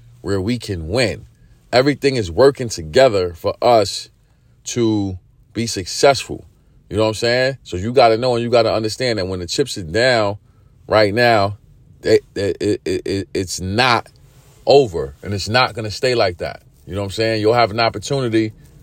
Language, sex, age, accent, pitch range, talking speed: English, male, 40-59, American, 100-120 Hz, 180 wpm